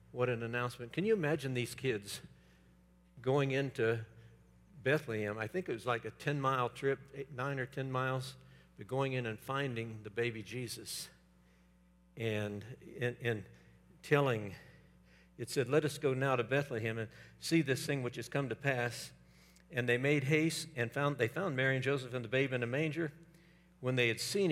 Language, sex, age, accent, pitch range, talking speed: English, male, 60-79, American, 110-140 Hz, 180 wpm